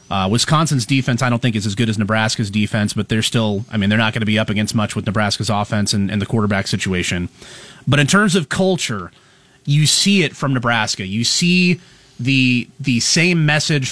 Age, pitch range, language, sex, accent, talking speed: 30-49, 115-145 Hz, English, male, American, 210 wpm